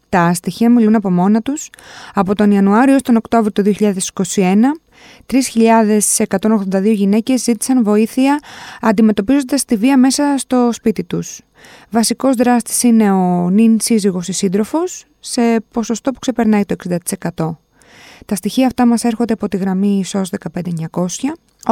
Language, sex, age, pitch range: Greek, female, 20-39, 185-240 Hz